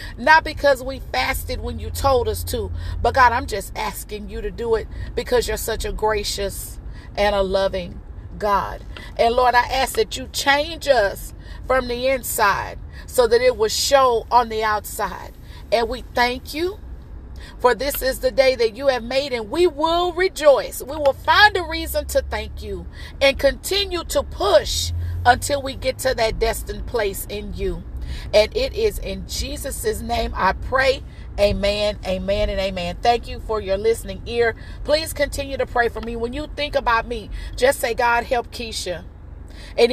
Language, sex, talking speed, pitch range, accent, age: English, female, 180 wpm, 215-285 Hz, American, 40-59